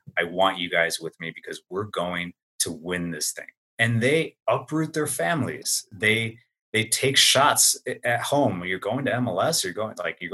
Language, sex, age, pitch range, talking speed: English, male, 30-49, 95-125 Hz, 185 wpm